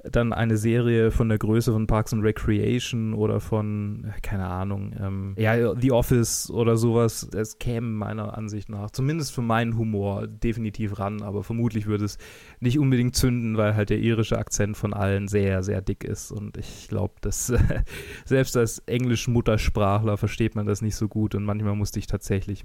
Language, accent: German, German